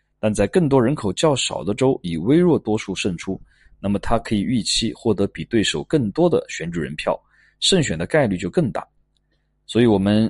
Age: 20-39